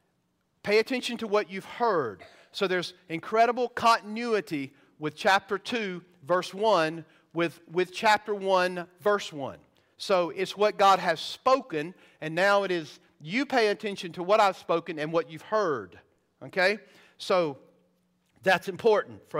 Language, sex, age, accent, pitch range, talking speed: English, male, 50-69, American, 155-205 Hz, 145 wpm